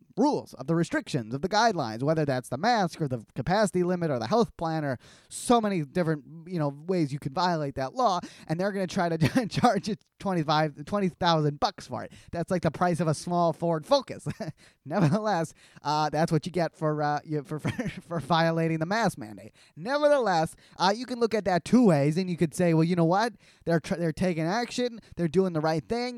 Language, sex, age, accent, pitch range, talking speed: English, male, 10-29, American, 160-200 Hz, 215 wpm